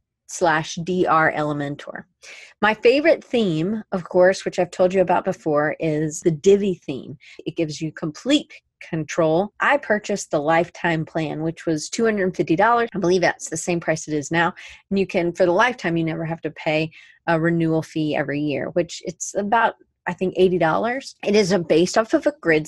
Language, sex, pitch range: English, female, 160-195 Hz